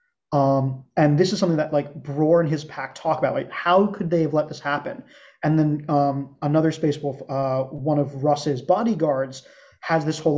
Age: 30-49